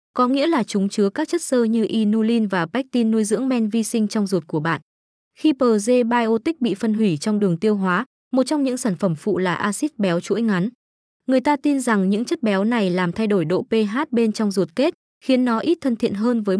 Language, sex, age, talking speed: Vietnamese, female, 20-39, 235 wpm